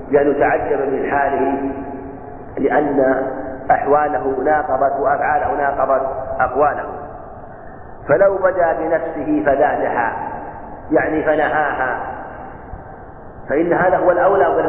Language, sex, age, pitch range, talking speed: Arabic, male, 50-69, 145-190 Hz, 85 wpm